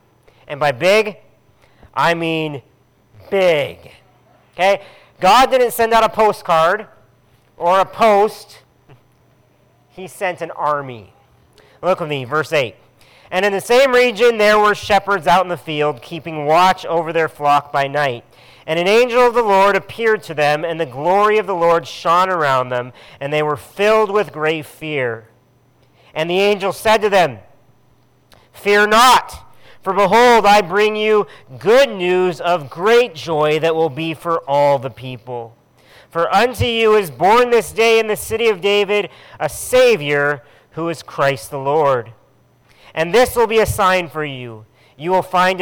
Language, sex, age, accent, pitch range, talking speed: English, male, 40-59, American, 130-200 Hz, 165 wpm